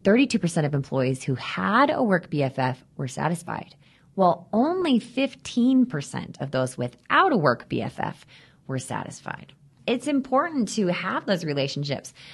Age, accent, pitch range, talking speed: 20-39, American, 135-175 Hz, 125 wpm